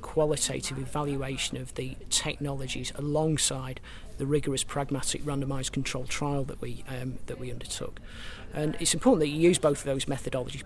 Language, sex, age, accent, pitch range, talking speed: English, male, 40-59, British, 125-150 Hz, 160 wpm